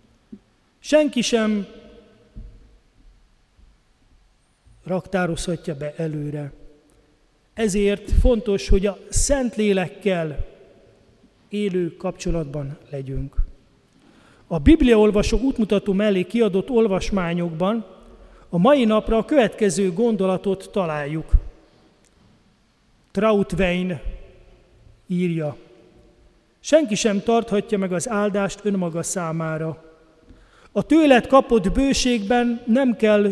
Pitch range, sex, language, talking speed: 175-225 Hz, male, Hungarian, 75 wpm